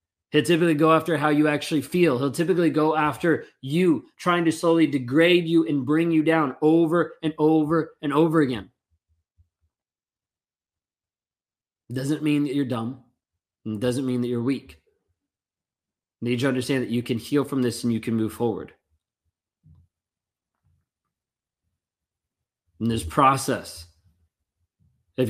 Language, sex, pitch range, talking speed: English, male, 110-145 Hz, 145 wpm